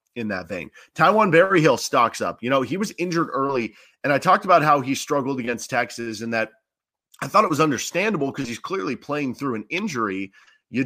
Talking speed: 210 wpm